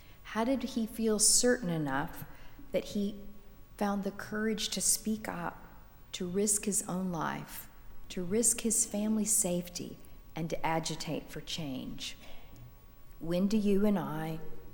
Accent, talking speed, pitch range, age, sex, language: American, 140 wpm, 165-220 Hz, 40-59, female, English